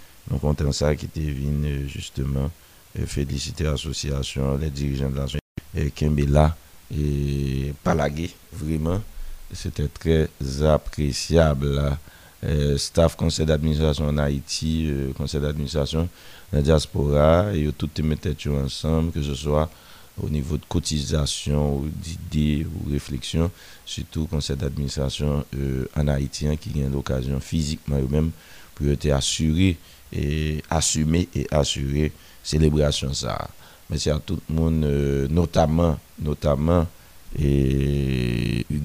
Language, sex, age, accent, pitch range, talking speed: French, male, 50-69, French, 70-80 Hz, 120 wpm